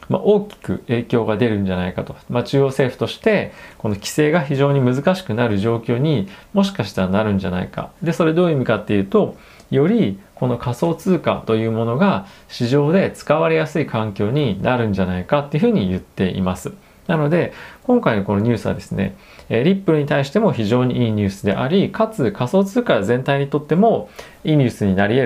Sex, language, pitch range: male, Japanese, 100-155 Hz